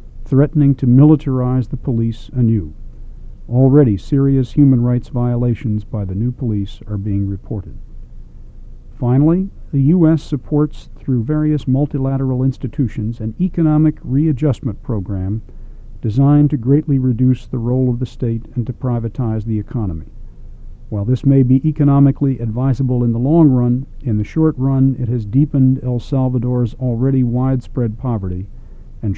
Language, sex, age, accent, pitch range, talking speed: English, male, 50-69, American, 110-140 Hz, 140 wpm